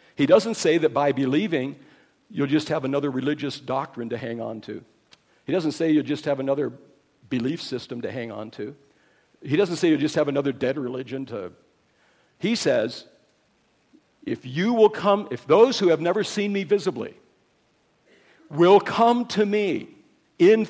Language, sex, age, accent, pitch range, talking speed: English, male, 60-79, American, 165-235 Hz, 170 wpm